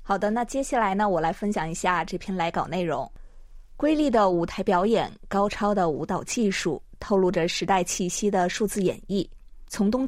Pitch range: 185-235 Hz